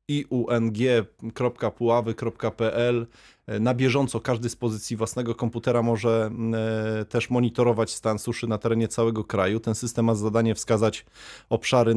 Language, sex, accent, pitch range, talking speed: Polish, male, native, 110-125 Hz, 120 wpm